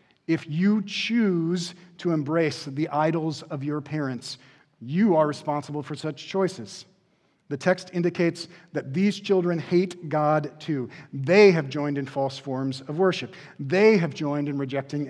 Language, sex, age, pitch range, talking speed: English, male, 40-59, 135-170 Hz, 150 wpm